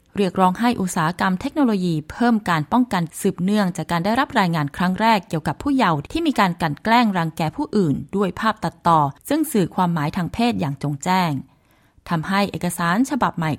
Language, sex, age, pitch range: Thai, female, 20-39, 165-220 Hz